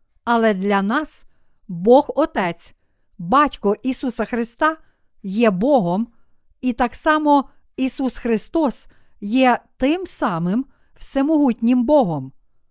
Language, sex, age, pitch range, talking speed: Ukrainian, female, 50-69, 220-275 Hz, 95 wpm